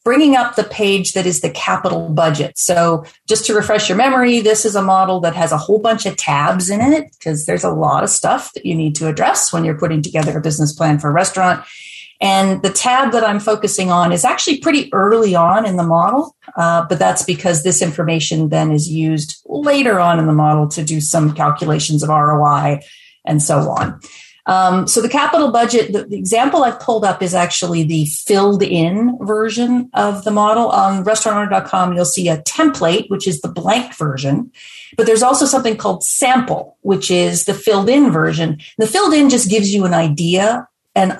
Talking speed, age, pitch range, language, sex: 200 wpm, 40-59, 165-220 Hz, English, female